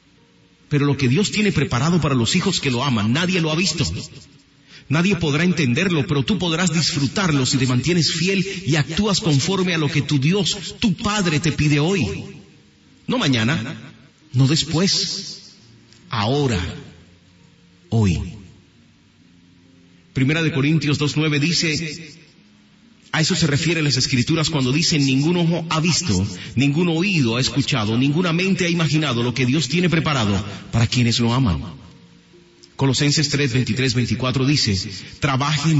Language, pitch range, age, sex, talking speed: Spanish, 115-160 Hz, 40-59, male, 145 wpm